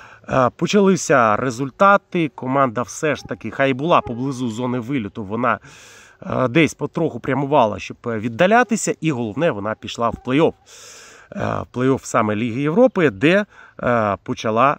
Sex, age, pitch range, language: male, 30-49, 120-165 Hz, Ukrainian